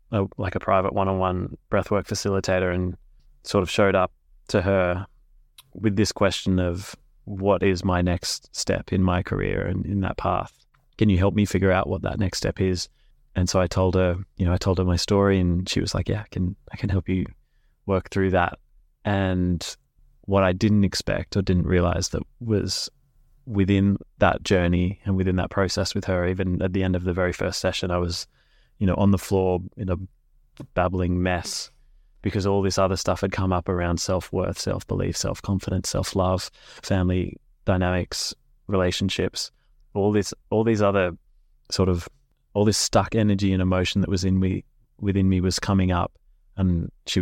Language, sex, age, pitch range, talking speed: English, male, 20-39, 90-100 Hz, 190 wpm